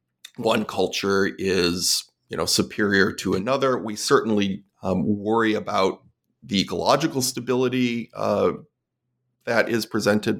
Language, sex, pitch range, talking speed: English, male, 105-125 Hz, 105 wpm